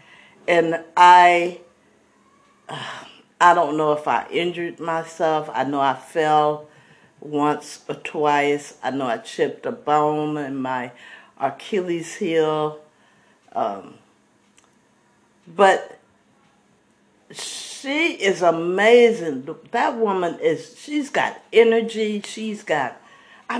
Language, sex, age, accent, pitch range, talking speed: English, female, 50-69, American, 160-230 Hz, 100 wpm